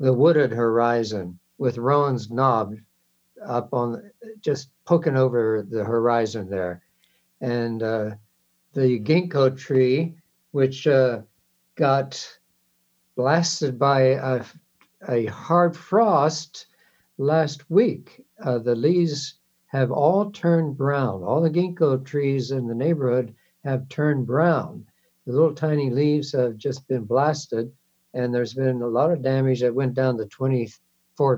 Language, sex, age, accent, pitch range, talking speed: English, male, 60-79, American, 115-140 Hz, 130 wpm